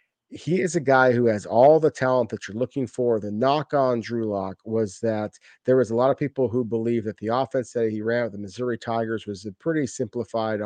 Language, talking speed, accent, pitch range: English, 235 wpm, American, 110-130 Hz